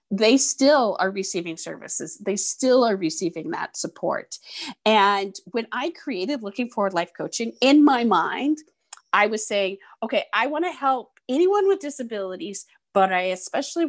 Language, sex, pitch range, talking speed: English, female, 200-270 Hz, 155 wpm